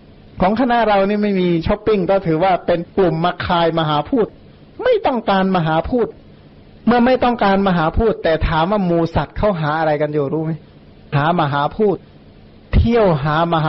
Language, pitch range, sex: Thai, 155-200 Hz, male